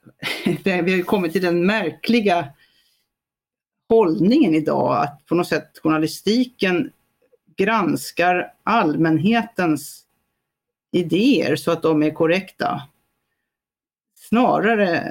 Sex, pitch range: female, 155-195 Hz